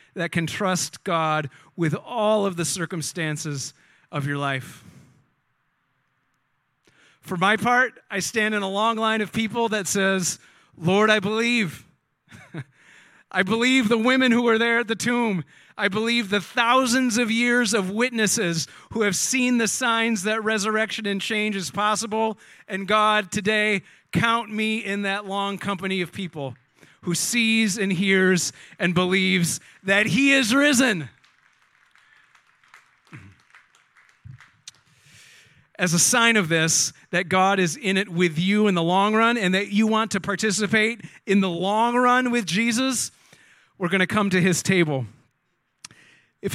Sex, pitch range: male, 175-220 Hz